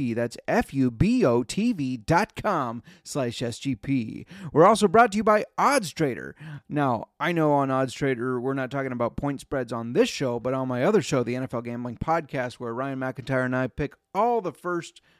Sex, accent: male, American